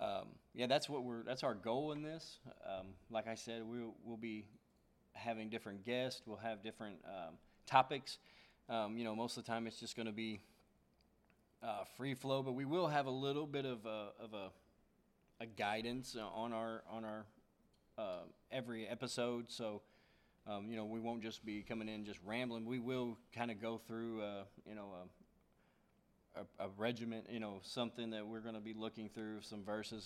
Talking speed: 195 wpm